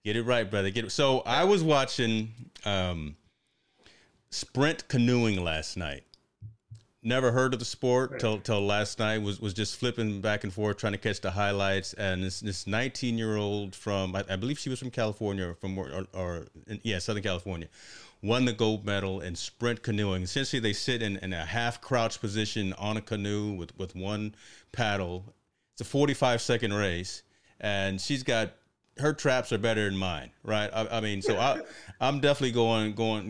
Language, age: English, 30-49